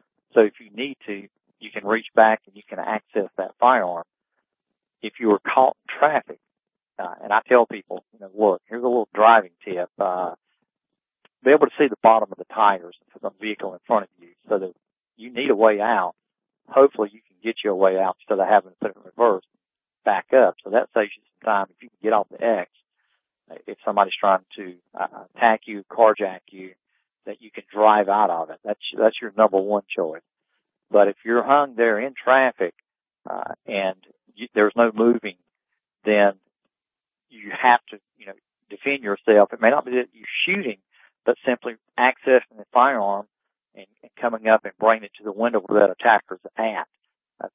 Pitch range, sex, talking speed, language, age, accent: 100-115 Hz, male, 200 wpm, English, 50-69, American